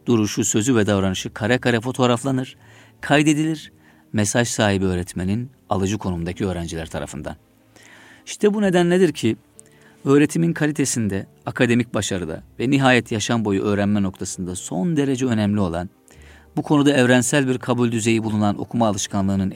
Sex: male